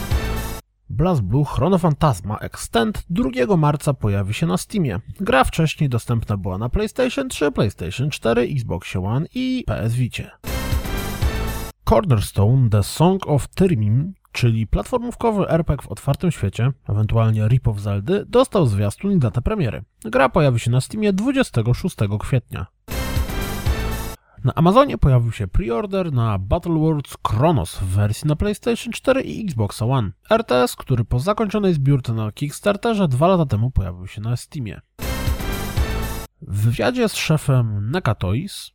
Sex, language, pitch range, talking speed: male, Polish, 105-160 Hz, 135 wpm